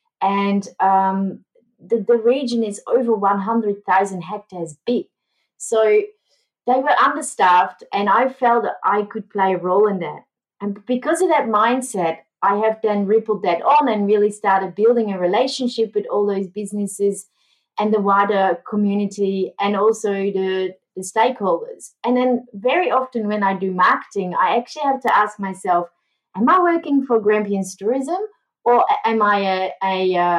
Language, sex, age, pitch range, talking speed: English, female, 30-49, 190-235 Hz, 160 wpm